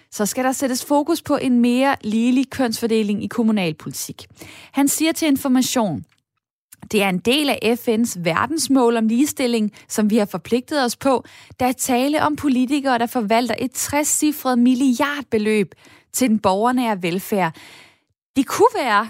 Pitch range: 210-275 Hz